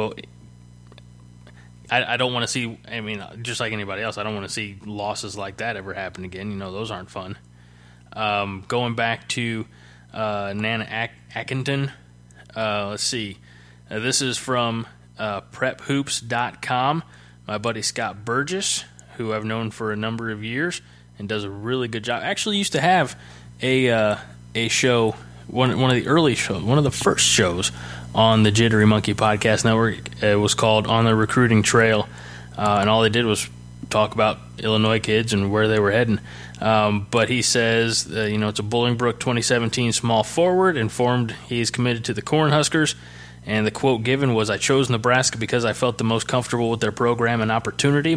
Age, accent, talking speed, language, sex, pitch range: 20-39, American, 185 wpm, English, male, 100-120 Hz